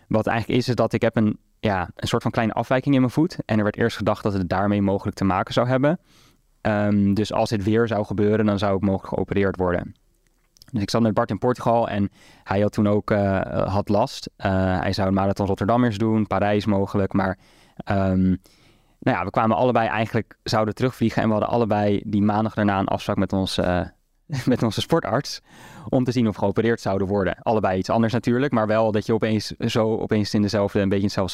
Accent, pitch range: Dutch, 100-115 Hz